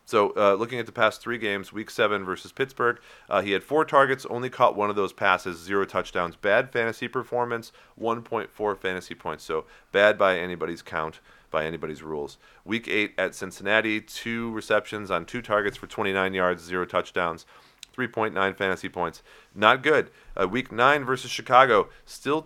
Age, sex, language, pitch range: 40-59, male, English, 90-115 Hz